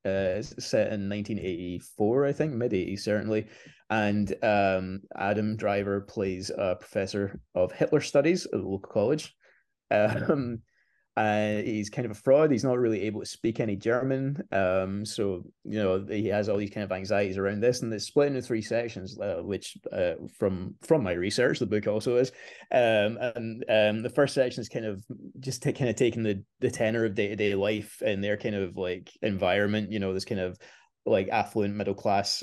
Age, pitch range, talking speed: 20-39, 95-115 Hz, 190 wpm